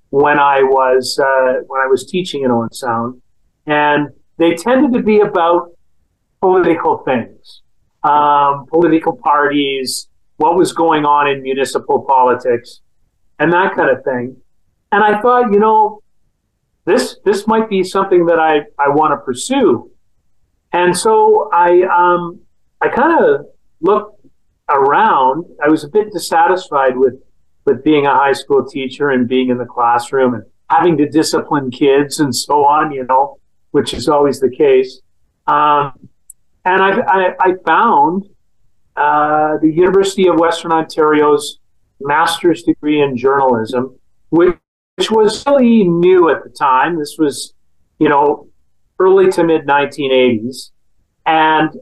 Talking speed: 145 wpm